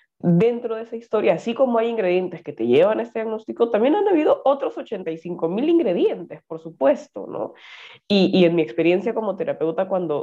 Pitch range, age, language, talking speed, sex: 165-225 Hz, 20-39, Spanish, 190 wpm, female